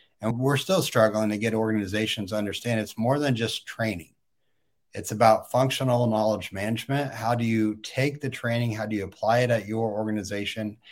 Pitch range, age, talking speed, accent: 105-120 Hz, 40-59, 180 wpm, American